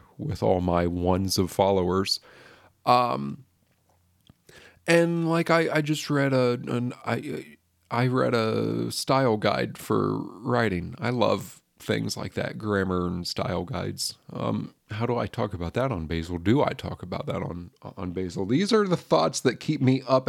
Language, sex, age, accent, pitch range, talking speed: English, male, 40-59, American, 95-130 Hz, 170 wpm